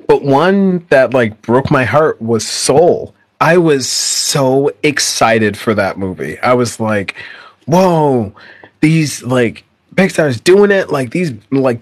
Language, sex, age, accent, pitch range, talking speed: English, male, 30-49, American, 120-155 Hz, 145 wpm